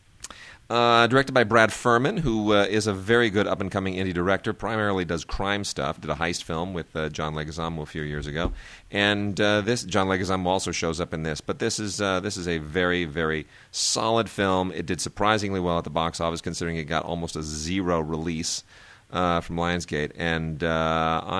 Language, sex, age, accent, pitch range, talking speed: English, male, 40-59, American, 85-105 Hz, 200 wpm